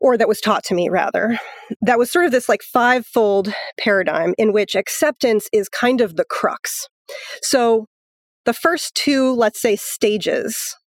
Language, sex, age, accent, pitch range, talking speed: English, female, 30-49, American, 195-245 Hz, 165 wpm